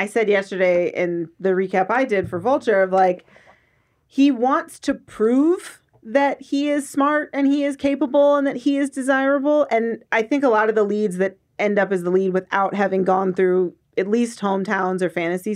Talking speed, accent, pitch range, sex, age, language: 200 wpm, American, 185-265 Hz, female, 40-59, English